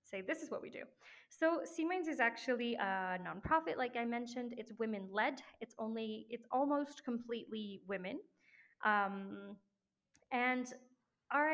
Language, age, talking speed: English, 20-39, 135 wpm